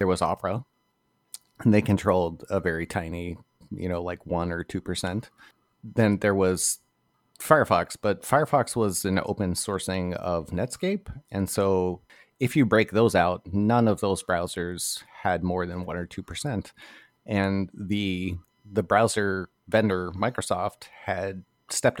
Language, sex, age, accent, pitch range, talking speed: English, male, 30-49, American, 90-110 Hz, 140 wpm